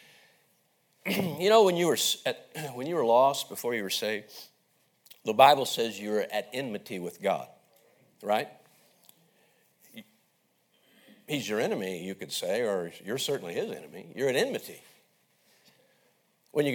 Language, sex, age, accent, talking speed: English, male, 50-69, American, 140 wpm